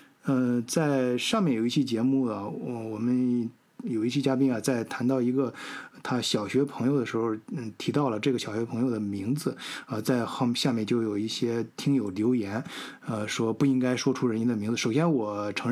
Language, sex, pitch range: Chinese, male, 115-140 Hz